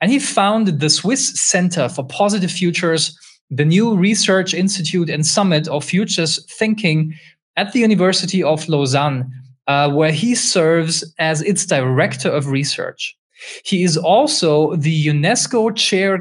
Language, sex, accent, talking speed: English, male, German, 140 wpm